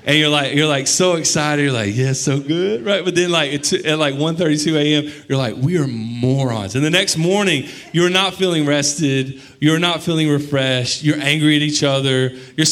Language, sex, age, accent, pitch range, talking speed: English, male, 30-49, American, 110-145 Hz, 210 wpm